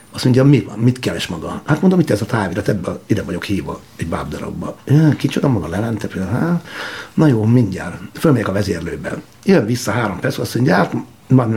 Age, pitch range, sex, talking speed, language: 60-79, 100-145 Hz, male, 185 wpm, Hungarian